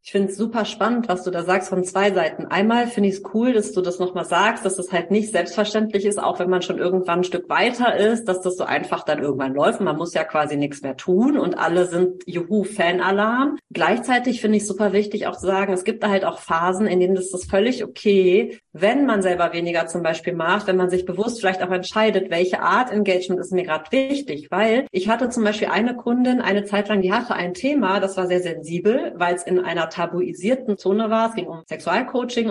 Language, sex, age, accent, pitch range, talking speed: German, female, 40-59, German, 180-220 Hz, 235 wpm